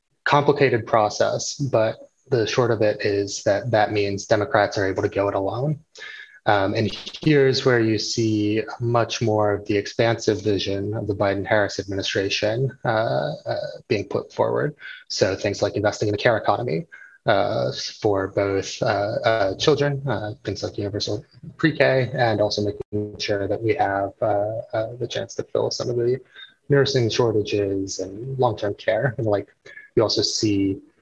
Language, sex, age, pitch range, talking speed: English, male, 20-39, 100-130 Hz, 165 wpm